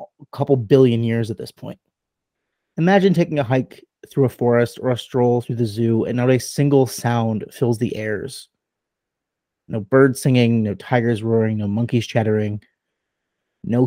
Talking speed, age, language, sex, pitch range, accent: 165 wpm, 30-49, English, male, 115-140 Hz, American